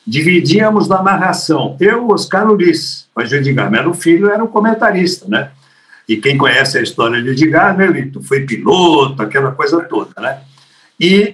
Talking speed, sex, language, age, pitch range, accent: 155 wpm, male, Portuguese, 60-79, 160-220 Hz, Brazilian